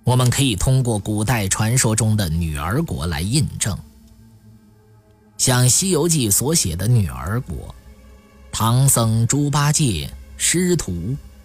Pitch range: 95-145 Hz